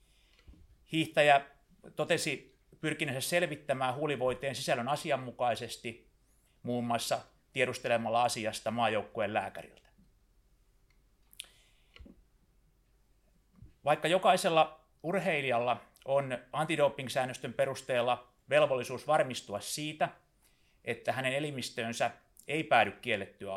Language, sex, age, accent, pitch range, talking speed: Finnish, male, 30-49, native, 115-145 Hz, 70 wpm